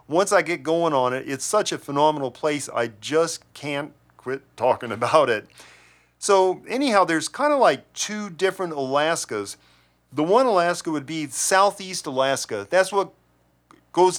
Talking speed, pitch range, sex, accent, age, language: 155 wpm, 125-175 Hz, male, American, 40-59, English